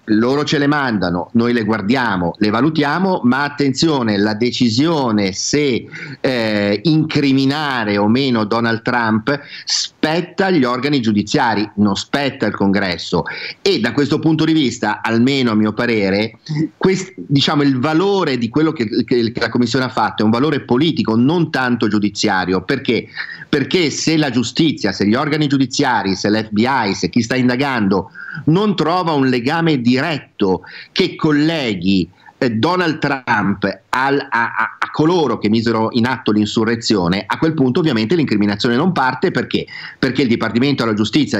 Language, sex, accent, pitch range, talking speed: Italian, male, native, 110-145 Hz, 150 wpm